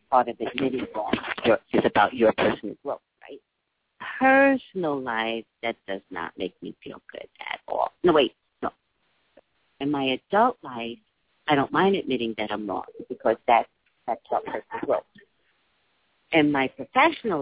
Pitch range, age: 120-190 Hz, 40-59